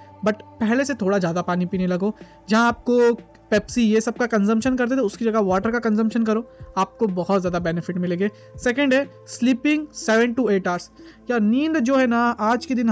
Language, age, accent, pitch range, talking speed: Hindi, 20-39, native, 200-235 Hz, 200 wpm